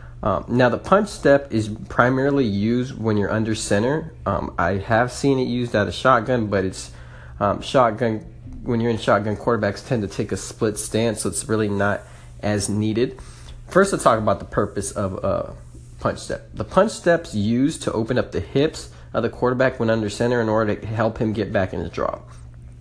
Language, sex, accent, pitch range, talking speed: English, male, American, 100-130 Hz, 205 wpm